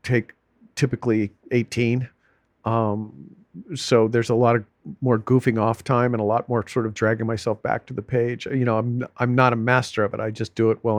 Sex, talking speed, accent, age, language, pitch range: male, 215 wpm, American, 40-59, English, 110-125 Hz